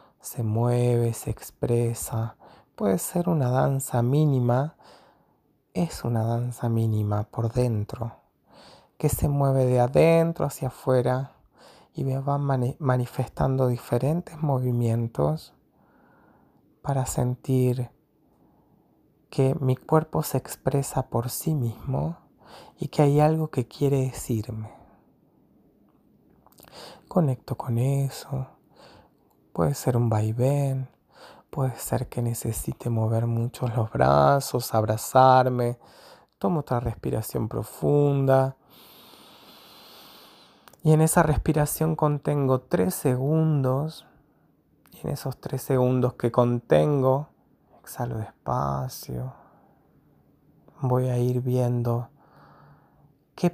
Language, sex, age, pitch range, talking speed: Spanish, male, 30-49, 120-140 Hz, 95 wpm